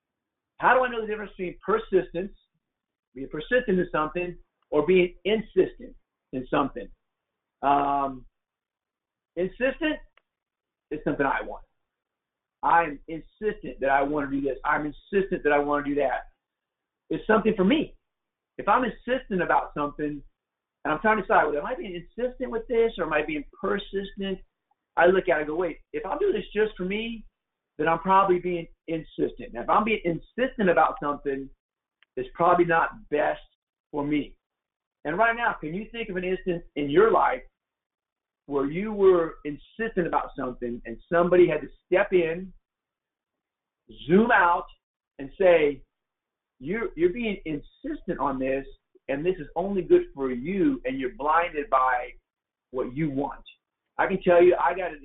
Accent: American